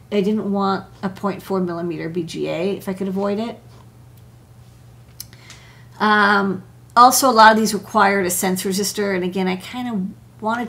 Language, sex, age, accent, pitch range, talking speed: English, female, 40-59, American, 185-220 Hz, 155 wpm